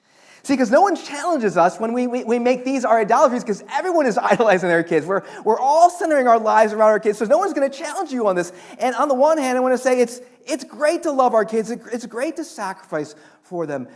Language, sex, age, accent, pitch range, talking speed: English, male, 40-59, American, 160-250 Hz, 255 wpm